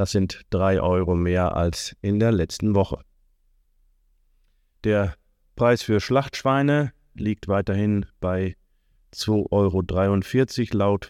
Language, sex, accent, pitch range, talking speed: German, male, German, 85-110 Hz, 110 wpm